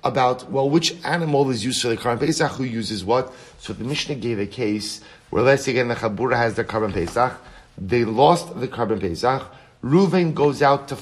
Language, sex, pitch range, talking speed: English, male, 115-145 Hz, 205 wpm